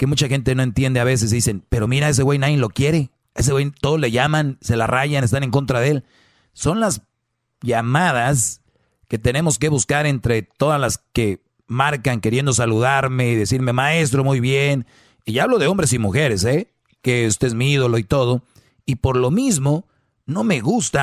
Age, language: 40-59, Spanish